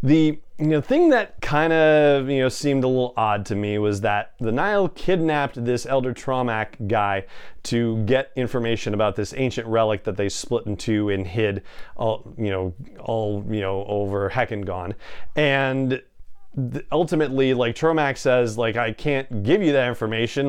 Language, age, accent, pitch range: English, 30-49, American, 110-145 Hz